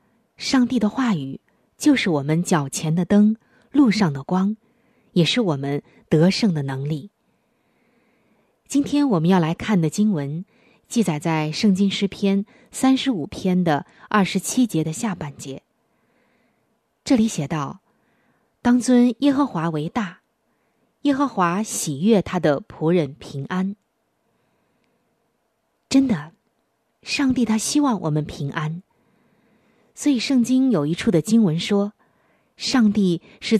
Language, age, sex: Chinese, 20-39, female